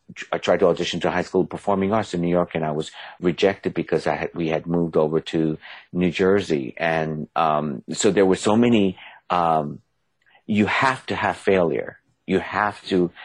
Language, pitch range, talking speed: English, 80-95 Hz, 190 wpm